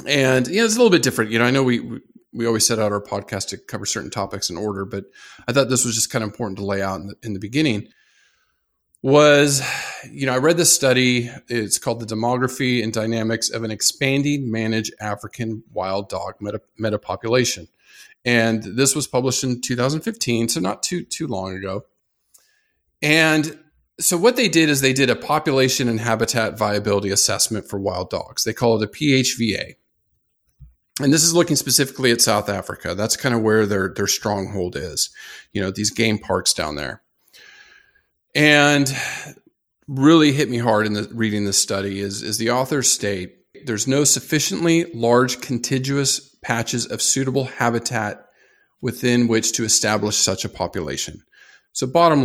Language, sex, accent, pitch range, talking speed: English, male, American, 105-135 Hz, 175 wpm